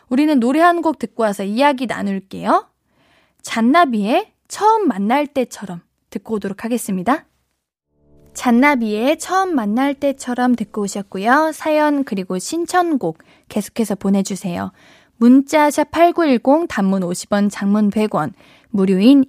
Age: 20-39